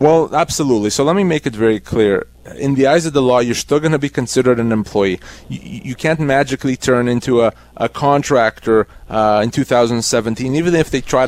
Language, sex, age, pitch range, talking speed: English, male, 30-49, 120-145 Hz, 210 wpm